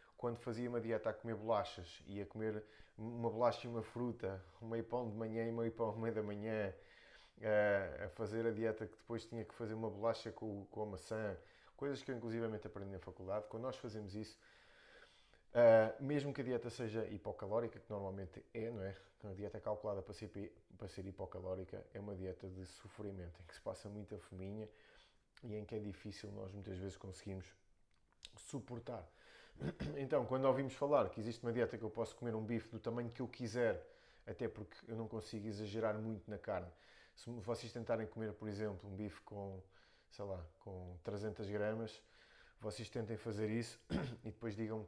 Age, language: 20-39, Portuguese